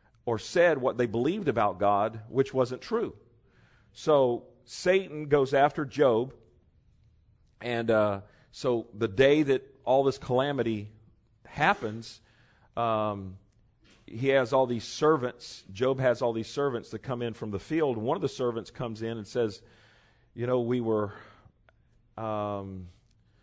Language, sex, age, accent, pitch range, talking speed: English, male, 40-59, American, 110-145 Hz, 145 wpm